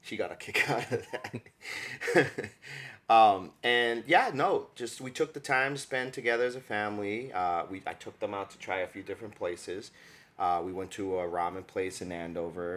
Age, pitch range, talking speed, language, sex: 30-49, 90-120 Hz, 200 wpm, English, male